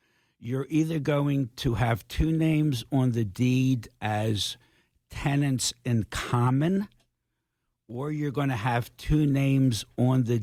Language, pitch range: English, 110-130 Hz